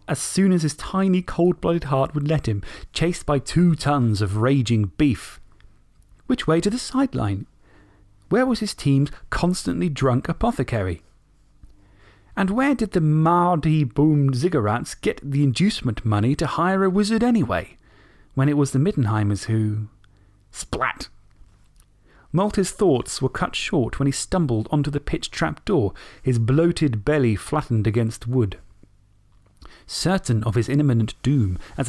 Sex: male